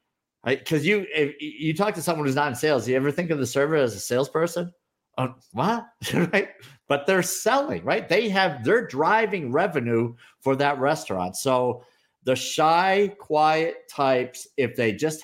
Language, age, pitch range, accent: English, 50-69, 125-170 Hz, American